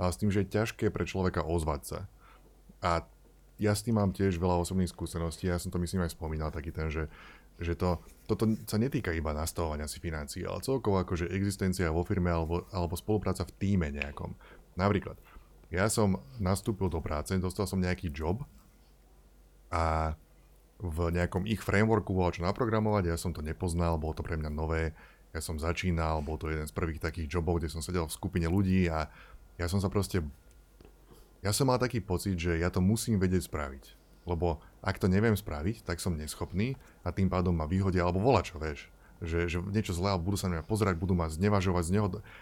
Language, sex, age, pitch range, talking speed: Slovak, male, 30-49, 85-100 Hz, 195 wpm